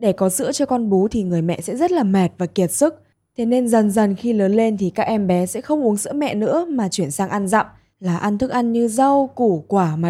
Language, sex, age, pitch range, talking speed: Vietnamese, female, 20-39, 180-240 Hz, 280 wpm